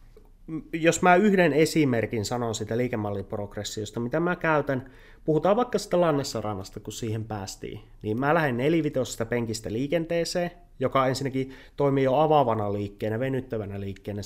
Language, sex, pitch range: Finnish, male, 110-135 Hz